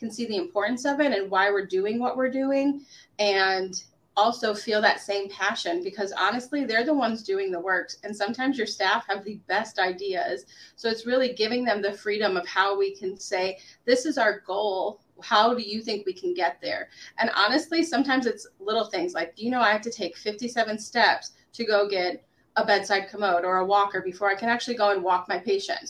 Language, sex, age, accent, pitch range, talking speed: English, female, 30-49, American, 195-235 Hz, 215 wpm